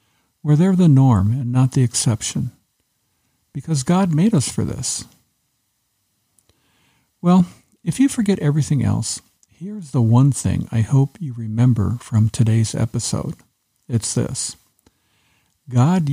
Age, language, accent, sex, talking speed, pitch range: 50-69, English, American, male, 125 wpm, 115-145 Hz